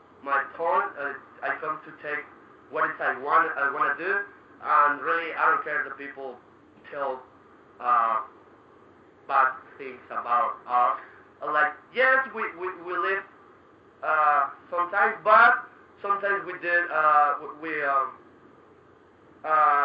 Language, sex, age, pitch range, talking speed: English, male, 30-49, 145-180 Hz, 135 wpm